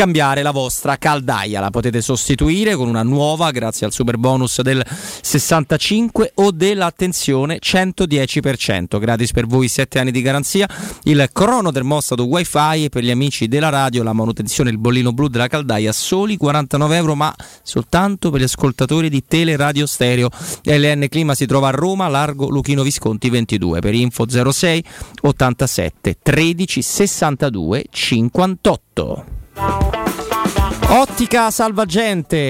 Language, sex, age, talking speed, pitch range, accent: Italian, male, 30-49, 135 wpm, 125-160 Hz, native